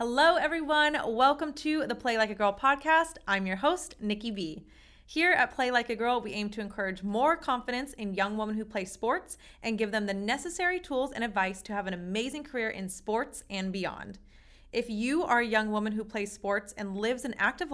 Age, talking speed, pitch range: 30-49, 215 wpm, 200-260 Hz